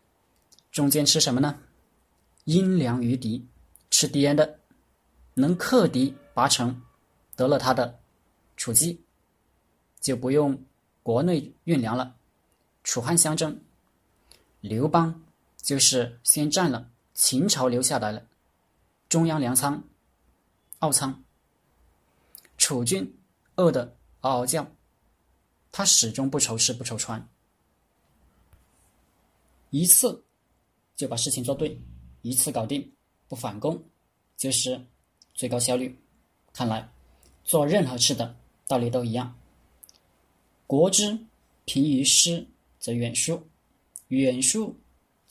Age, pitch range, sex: 20-39, 110-145 Hz, male